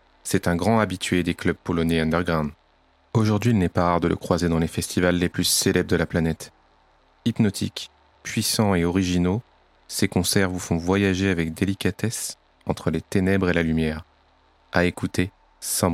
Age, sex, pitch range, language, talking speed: 30-49, male, 85-95 Hz, French, 170 wpm